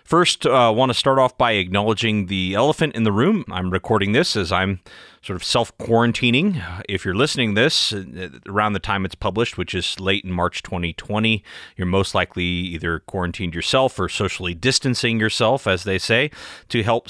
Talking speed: 185 wpm